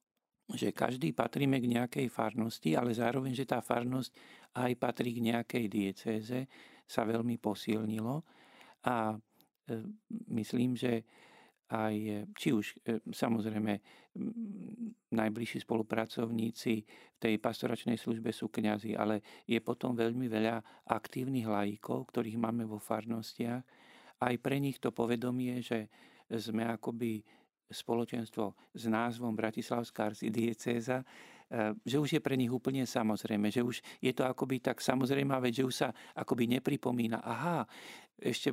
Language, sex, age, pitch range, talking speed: Slovak, male, 50-69, 115-130 Hz, 125 wpm